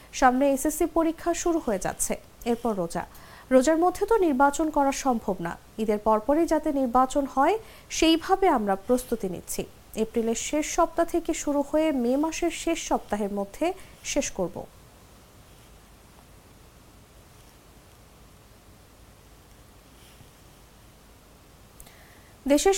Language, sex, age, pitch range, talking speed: English, female, 50-69, 225-325 Hz, 100 wpm